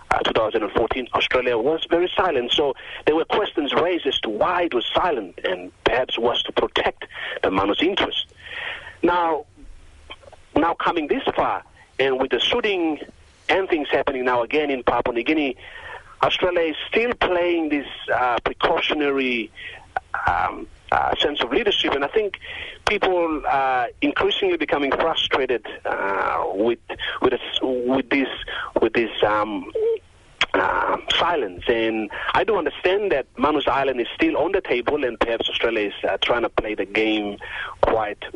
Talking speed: 145 wpm